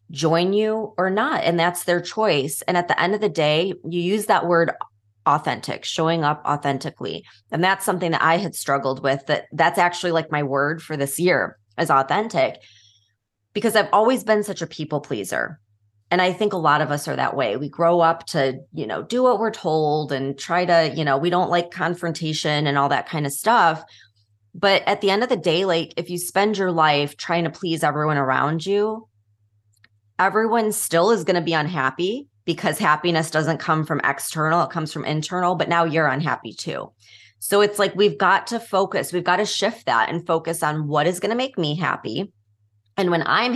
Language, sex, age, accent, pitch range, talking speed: English, female, 20-39, American, 145-185 Hz, 210 wpm